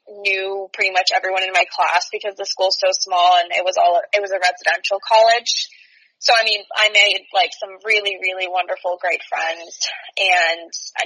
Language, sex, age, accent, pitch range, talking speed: English, female, 20-39, American, 180-215 Hz, 190 wpm